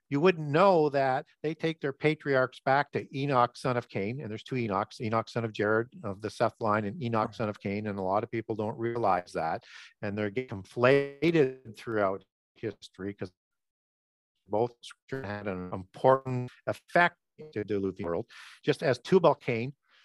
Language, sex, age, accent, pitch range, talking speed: English, male, 50-69, American, 115-150 Hz, 170 wpm